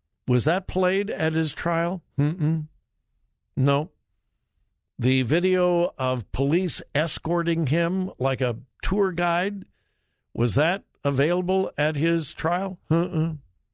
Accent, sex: American, male